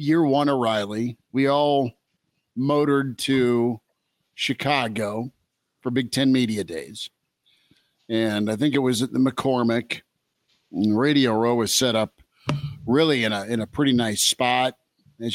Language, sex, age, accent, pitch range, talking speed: English, male, 50-69, American, 115-140 Hz, 140 wpm